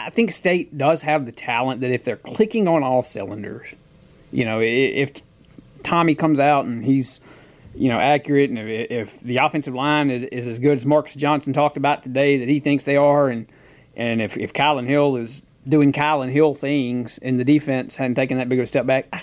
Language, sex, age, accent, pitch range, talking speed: English, male, 30-49, American, 130-155 Hz, 220 wpm